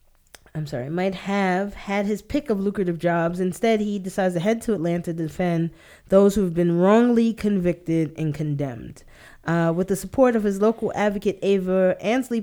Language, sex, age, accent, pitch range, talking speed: English, female, 20-39, American, 170-215 Hz, 180 wpm